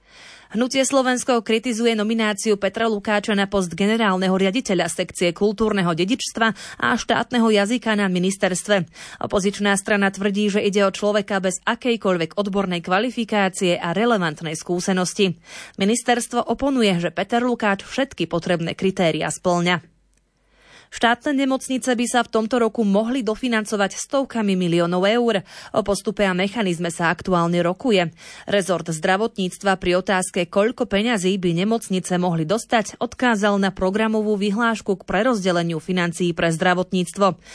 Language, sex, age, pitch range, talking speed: Slovak, female, 20-39, 185-225 Hz, 125 wpm